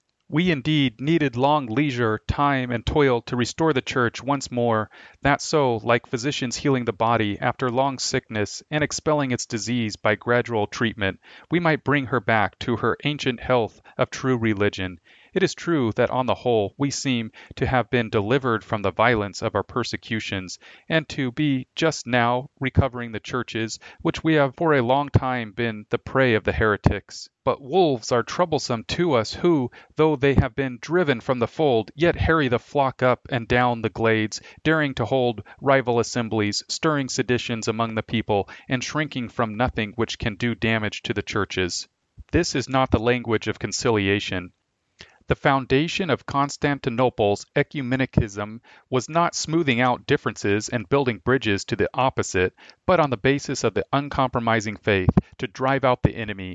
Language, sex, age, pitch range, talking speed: English, male, 40-59, 110-140 Hz, 175 wpm